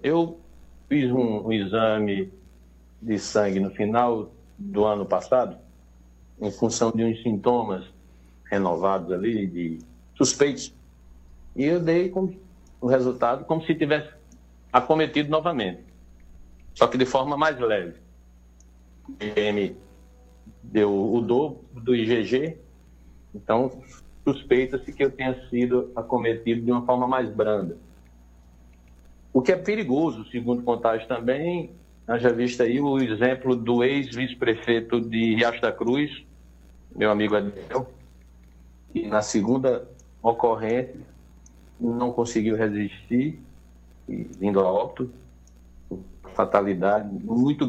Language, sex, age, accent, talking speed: Portuguese, male, 60-79, Brazilian, 110 wpm